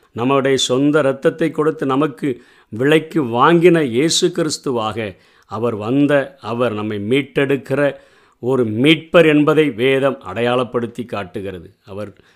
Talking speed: 100 wpm